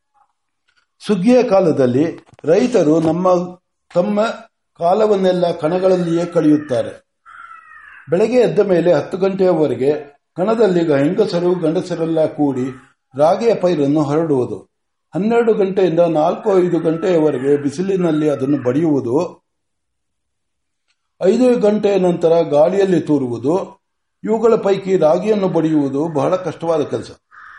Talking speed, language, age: 85 wpm, Kannada, 60-79